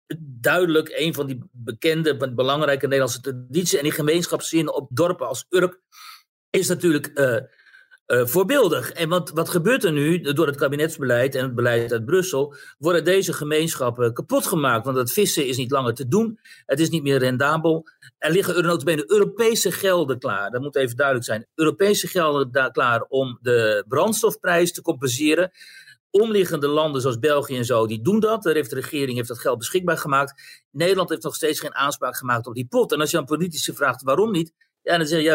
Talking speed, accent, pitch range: 190 wpm, Dutch, 140-180 Hz